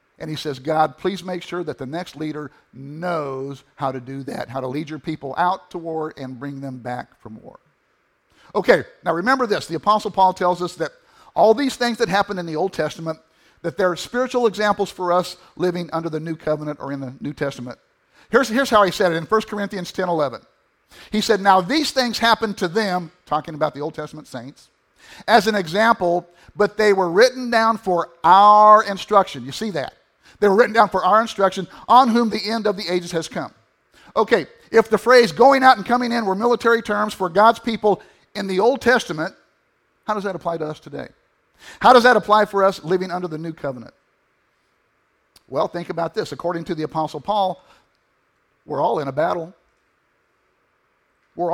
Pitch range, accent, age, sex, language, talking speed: 155-220 Hz, American, 50-69, male, English, 200 wpm